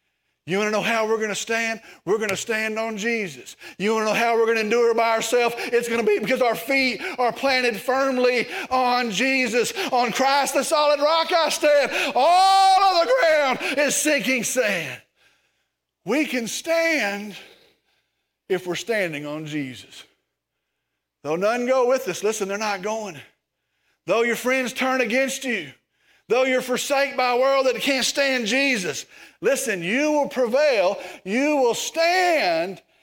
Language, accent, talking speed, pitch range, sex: English, American, 165 wpm, 220-290 Hz, male